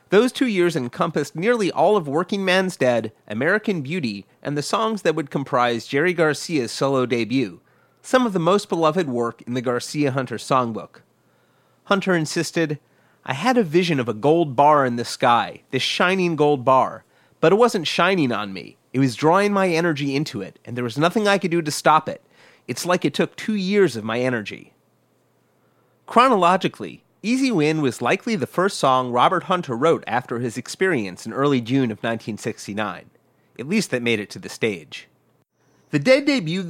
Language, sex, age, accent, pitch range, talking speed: English, male, 30-49, American, 125-185 Hz, 180 wpm